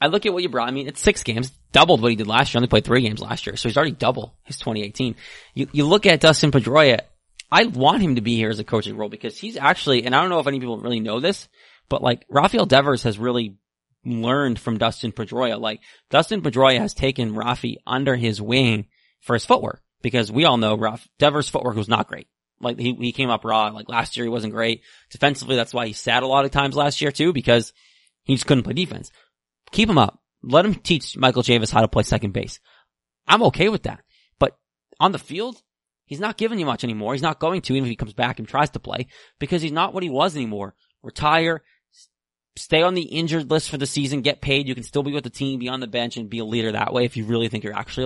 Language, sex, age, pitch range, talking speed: English, male, 30-49, 115-145 Hz, 250 wpm